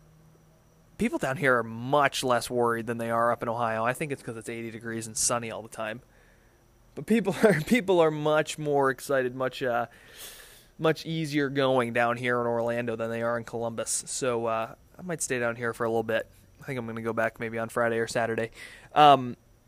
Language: English